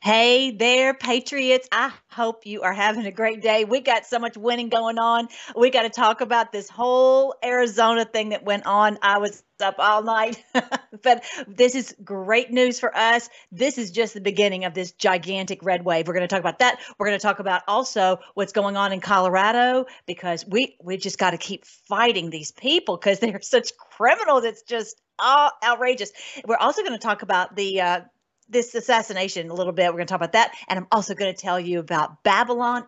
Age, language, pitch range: 40-59, English, 190-245 Hz